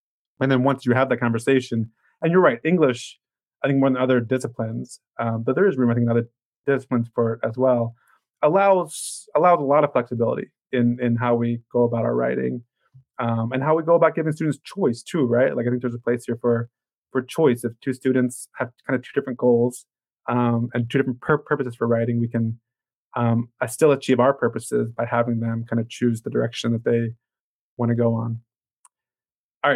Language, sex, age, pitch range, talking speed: English, male, 20-39, 120-135 Hz, 210 wpm